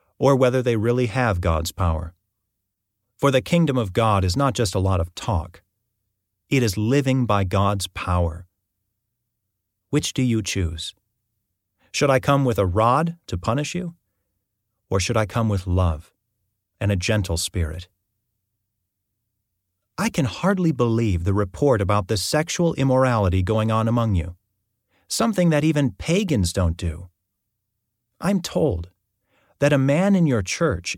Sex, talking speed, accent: male, 145 wpm, American